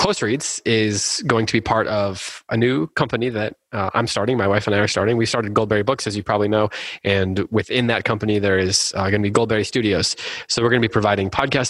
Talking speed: 240 wpm